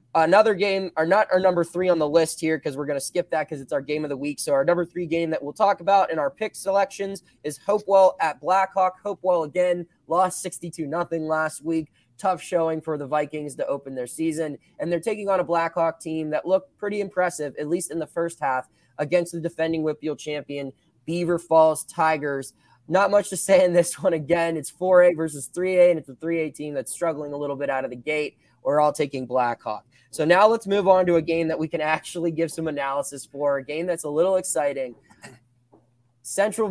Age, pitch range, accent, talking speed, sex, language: 20-39, 150-185 Hz, American, 220 wpm, male, English